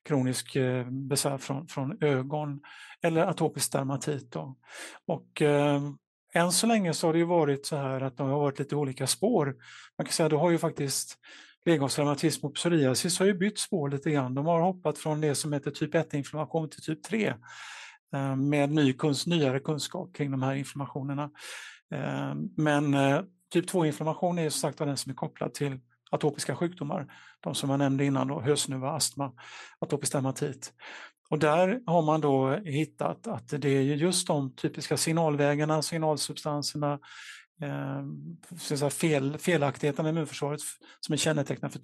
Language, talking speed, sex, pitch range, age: Swedish, 165 wpm, male, 140-160 Hz, 50-69